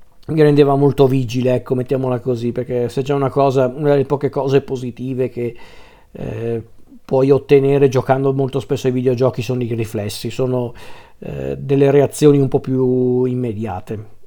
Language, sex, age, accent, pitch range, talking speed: Italian, male, 50-69, native, 120-135 Hz, 155 wpm